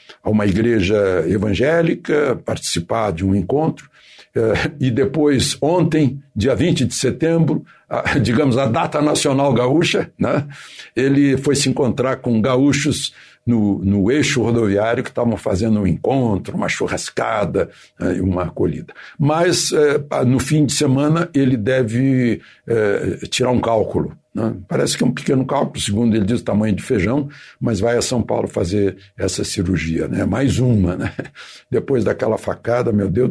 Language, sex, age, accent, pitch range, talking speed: Portuguese, male, 60-79, Brazilian, 105-140 Hz, 145 wpm